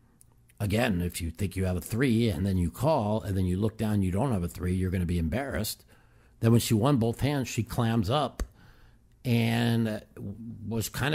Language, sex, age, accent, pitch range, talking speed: English, male, 50-69, American, 95-120 Hz, 210 wpm